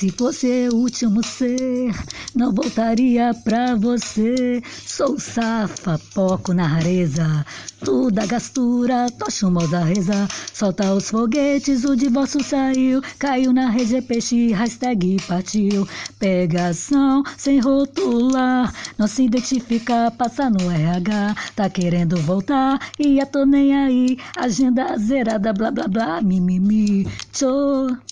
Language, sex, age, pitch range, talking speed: Portuguese, female, 20-39, 195-260 Hz, 125 wpm